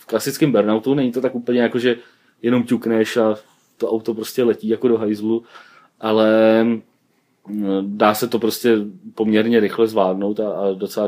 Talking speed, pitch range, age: 155 wpm, 110-120 Hz, 30-49